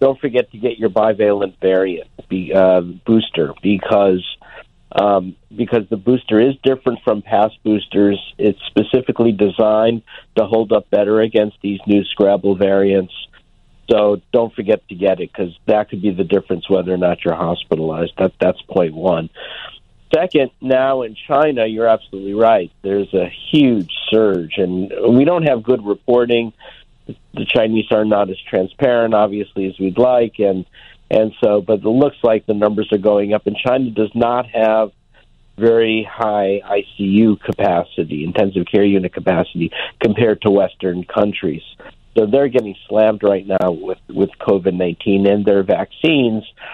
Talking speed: 155 wpm